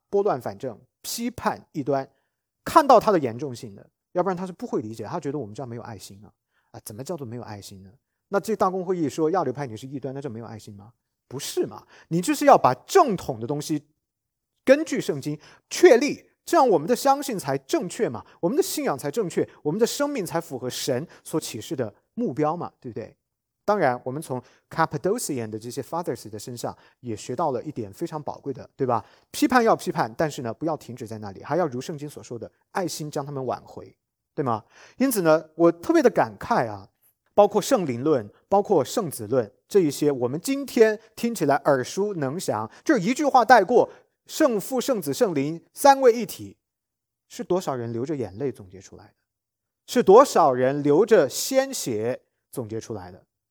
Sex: male